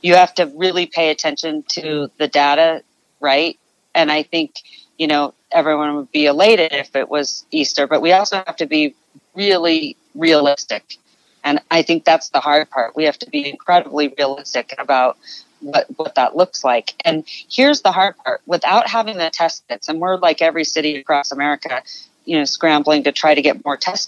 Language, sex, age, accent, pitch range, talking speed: English, female, 40-59, American, 150-185 Hz, 190 wpm